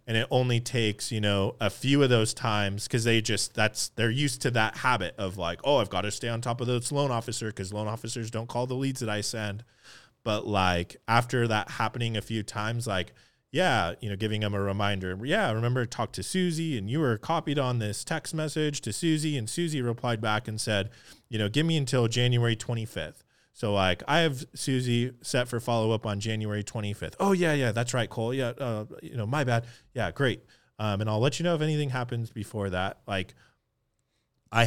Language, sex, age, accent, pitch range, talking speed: English, male, 20-39, American, 105-125 Hz, 220 wpm